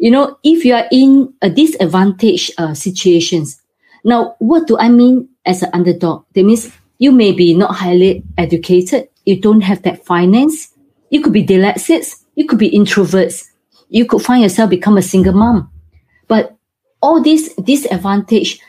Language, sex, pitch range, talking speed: English, female, 180-255 Hz, 165 wpm